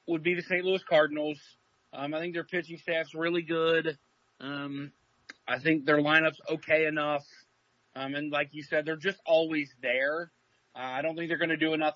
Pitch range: 145-170 Hz